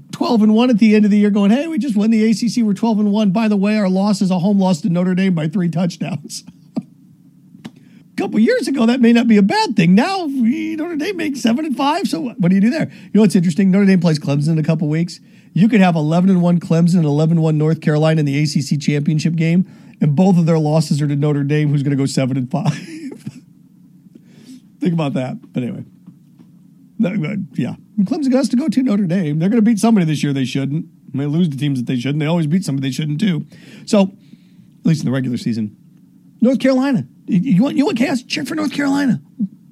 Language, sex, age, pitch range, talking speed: English, male, 40-59, 170-230 Hz, 230 wpm